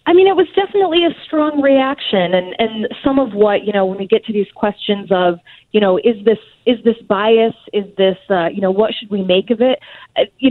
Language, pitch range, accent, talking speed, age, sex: English, 175-225 Hz, American, 235 wpm, 30-49, female